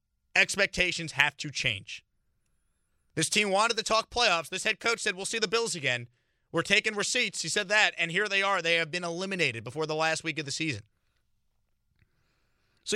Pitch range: 130-200 Hz